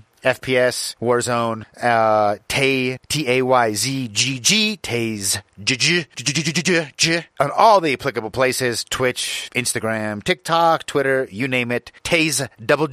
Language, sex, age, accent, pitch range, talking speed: English, male, 30-49, American, 105-130 Hz, 115 wpm